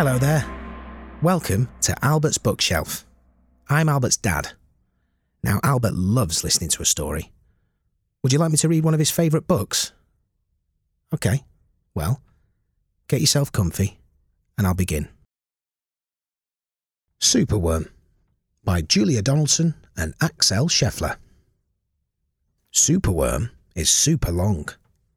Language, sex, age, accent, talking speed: English, male, 30-49, British, 110 wpm